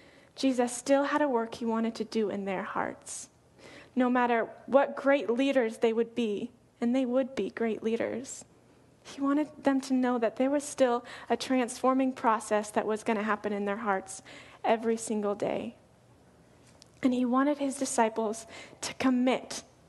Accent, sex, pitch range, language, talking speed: American, female, 225-270 Hz, English, 170 wpm